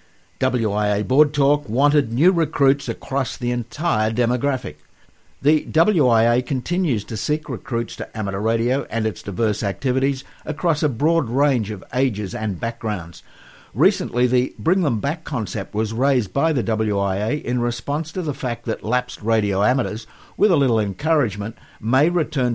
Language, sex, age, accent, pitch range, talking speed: English, male, 60-79, Australian, 110-140 Hz, 150 wpm